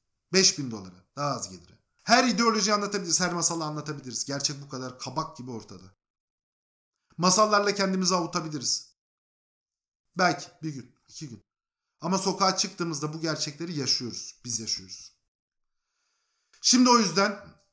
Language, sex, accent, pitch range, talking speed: Turkish, male, native, 145-190 Hz, 125 wpm